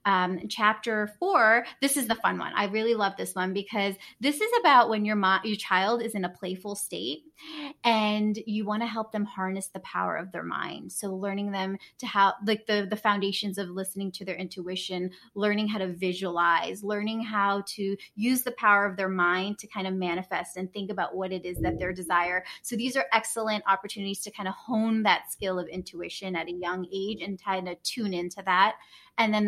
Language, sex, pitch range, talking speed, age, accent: English, female, 190-230 Hz, 215 wpm, 20-39, American